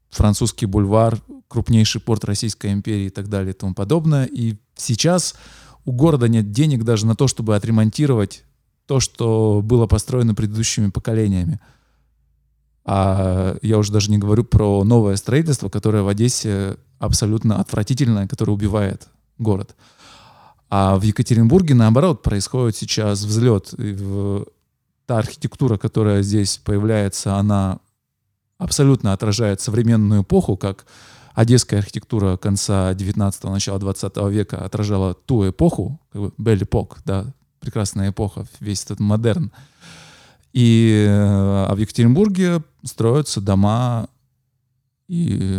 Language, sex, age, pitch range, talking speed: Russian, male, 20-39, 100-120 Hz, 120 wpm